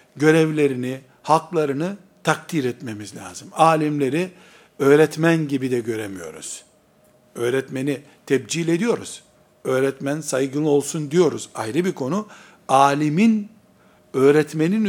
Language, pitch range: Turkish, 140-175 Hz